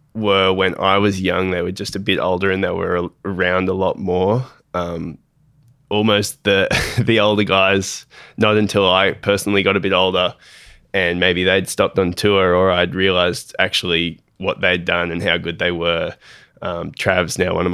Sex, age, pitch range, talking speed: male, 20-39, 95-105 Hz, 190 wpm